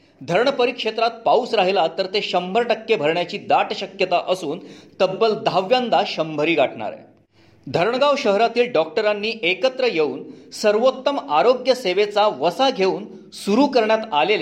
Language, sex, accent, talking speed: Marathi, male, native, 85 wpm